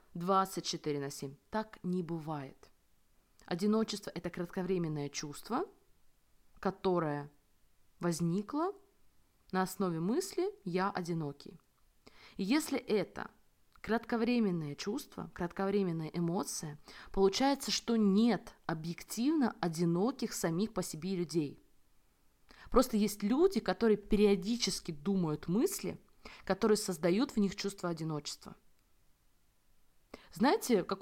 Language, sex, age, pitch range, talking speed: Russian, female, 20-39, 175-230 Hz, 95 wpm